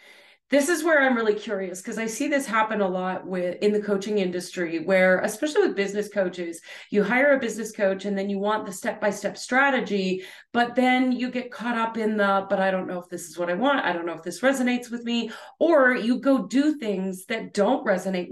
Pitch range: 200-260 Hz